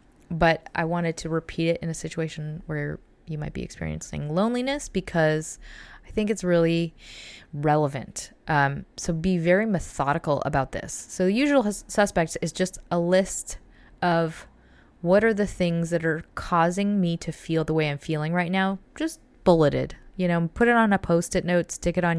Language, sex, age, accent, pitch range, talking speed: English, female, 20-39, American, 150-180 Hz, 180 wpm